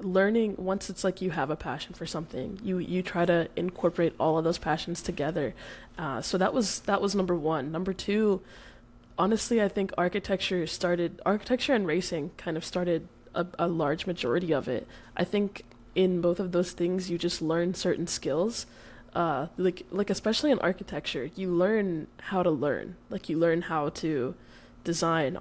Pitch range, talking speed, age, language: 160-195 Hz, 180 wpm, 20-39, English